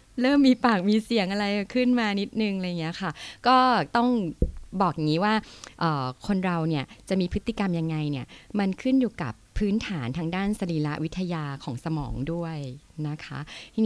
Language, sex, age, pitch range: Thai, female, 20-39, 155-220 Hz